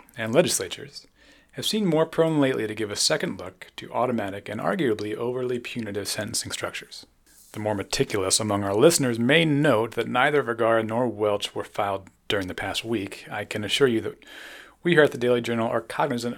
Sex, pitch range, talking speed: male, 100-120 Hz, 190 wpm